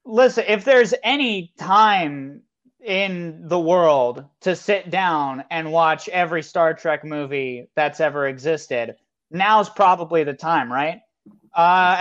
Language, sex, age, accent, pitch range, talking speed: English, male, 30-49, American, 155-205 Hz, 130 wpm